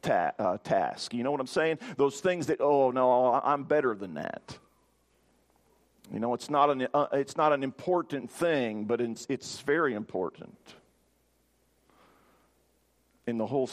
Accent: American